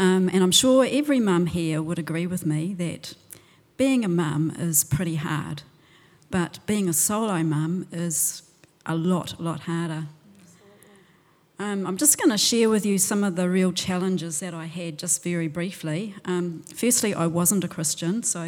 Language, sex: English, female